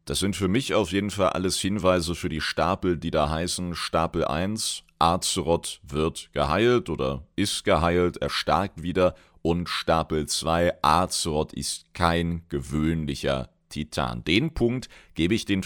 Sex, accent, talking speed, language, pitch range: male, German, 145 wpm, German, 80-95 Hz